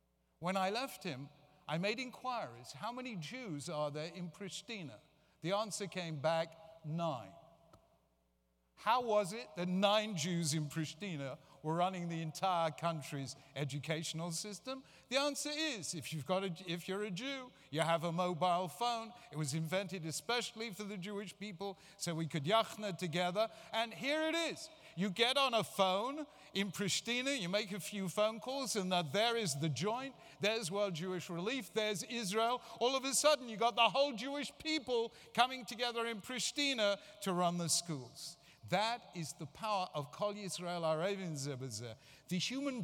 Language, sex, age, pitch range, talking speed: English, male, 60-79, 160-225 Hz, 165 wpm